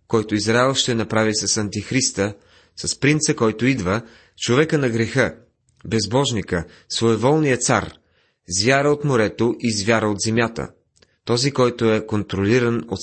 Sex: male